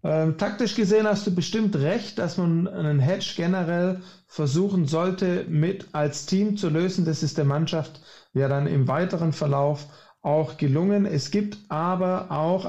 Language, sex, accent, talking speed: German, male, German, 155 wpm